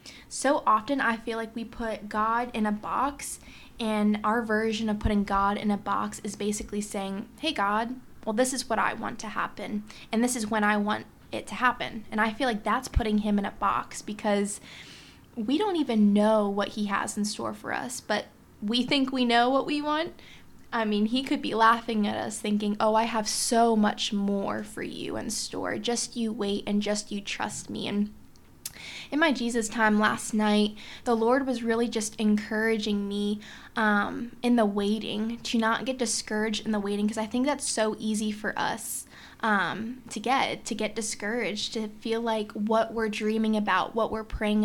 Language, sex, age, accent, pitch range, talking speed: English, female, 20-39, American, 210-235 Hz, 200 wpm